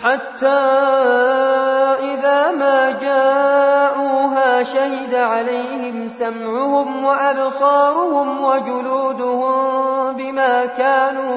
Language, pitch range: Arabic, 245-275 Hz